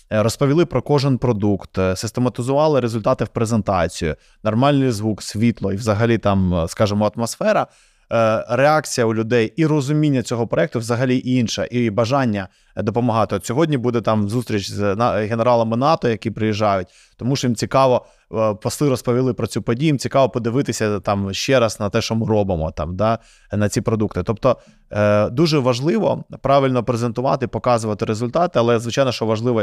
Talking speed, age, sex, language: 150 wpm, 20-39, male, Ukrainian